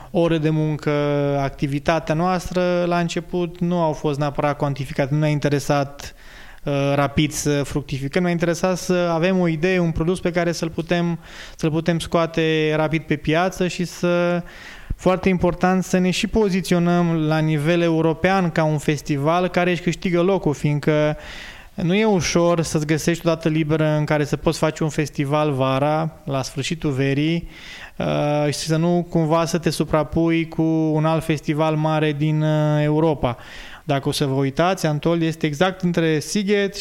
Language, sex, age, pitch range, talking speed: Romanian, male, 20-39, 150-175 Hz, 165 wpm